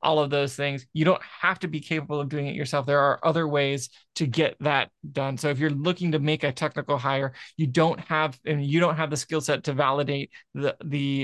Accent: American